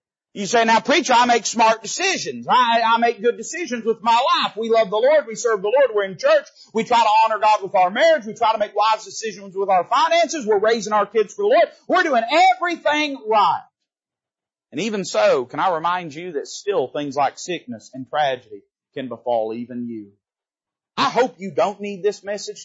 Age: 40-59